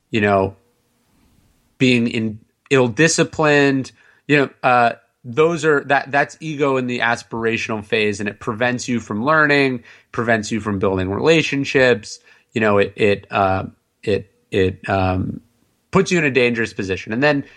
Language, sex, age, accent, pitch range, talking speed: English, male, 30-49, American, 110-140 Hz, 150 wpm